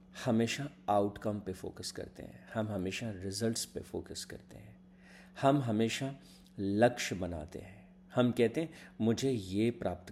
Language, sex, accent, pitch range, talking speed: Hindi, male, native, 95-120 Hz, 140 wpm